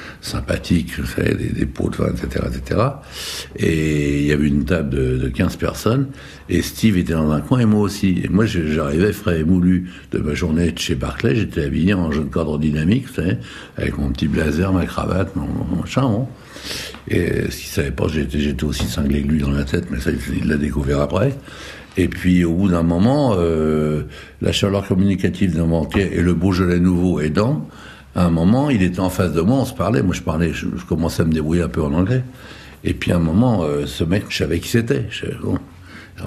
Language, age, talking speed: French, 60-79, 230 wpm